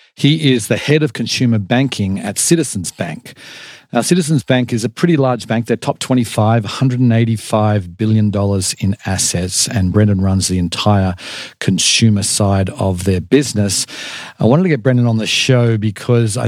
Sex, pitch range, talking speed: male, 100-120 Hz, 165 wpm